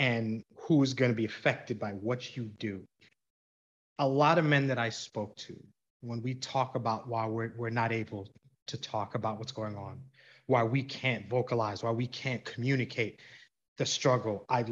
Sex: male